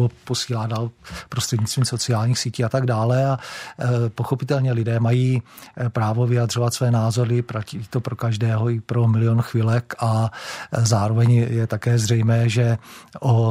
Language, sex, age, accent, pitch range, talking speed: Czech, male, 40-59, native, 115-120 Hz, 140 wpm